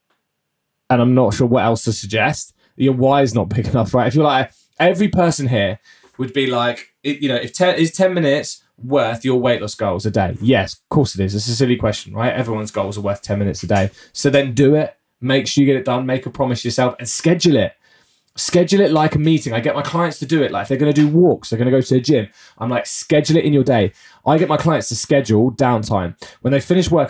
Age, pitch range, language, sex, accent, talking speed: 20-39, 115-145 Hz, English, male, British, 250 wpm